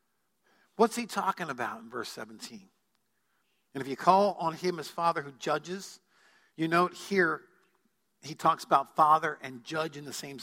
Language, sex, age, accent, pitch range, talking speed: English, male, 50-69, American, 155-190 Hz, 165 wpm